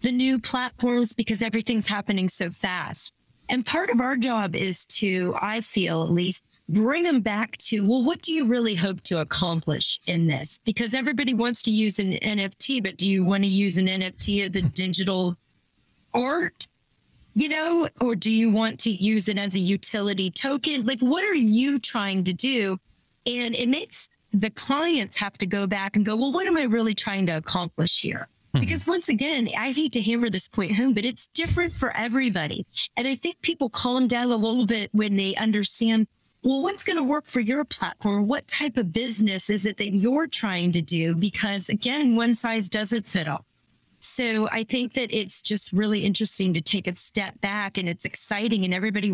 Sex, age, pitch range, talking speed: female, 30-49, 195-245 Hz, 200 wpm